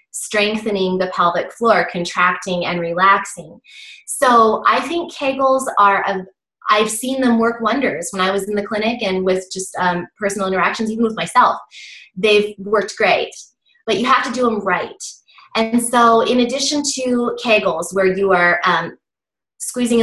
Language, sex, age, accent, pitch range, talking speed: English, female, 20-39, American, 190-240 Hz, 160 wpm